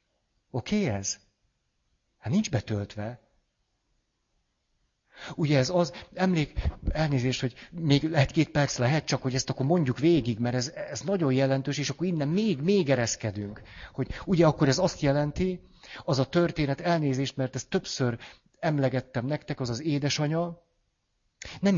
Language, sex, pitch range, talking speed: Hungarian, male, 120-155 Hz, 140 wpm